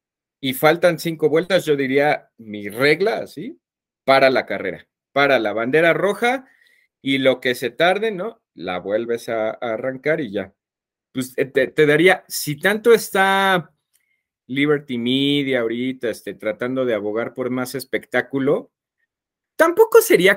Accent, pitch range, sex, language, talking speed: Mexican, 130-190 Hz, male, Spanish, 140 wpm